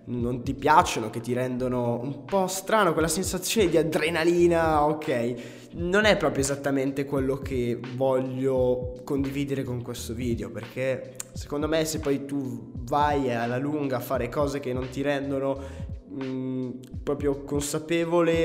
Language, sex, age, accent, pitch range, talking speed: Italian, male, 20-39, native, 120-160 Hz, 145 wpm